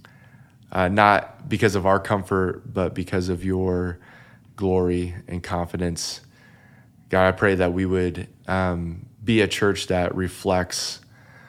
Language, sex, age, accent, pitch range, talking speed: English, male, 20-39, American, 90-110 Hz, 130 wpm